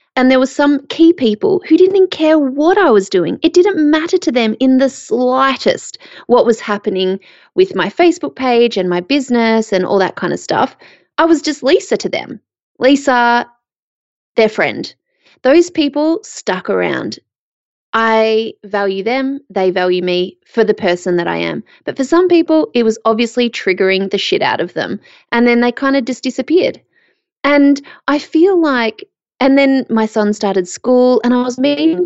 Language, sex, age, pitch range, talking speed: English, female, 20-39, 200-280 Hz, 180 wpm